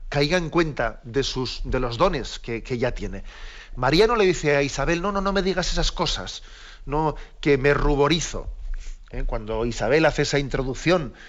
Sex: male